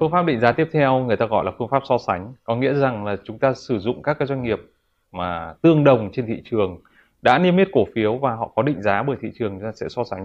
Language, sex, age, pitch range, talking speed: Vietnamese, male, 20-39, 105-130 Hz, 295 wpm